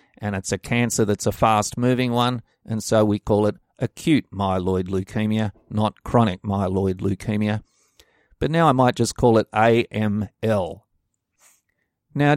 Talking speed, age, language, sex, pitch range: 140 wpm, 50-69, English, male, 105-125 Hz